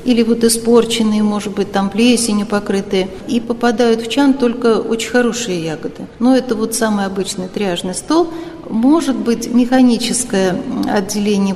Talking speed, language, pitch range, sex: 140 wpm, Russian, 200-245 Hz, female